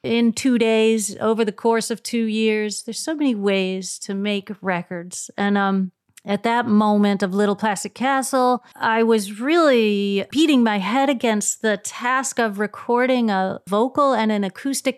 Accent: American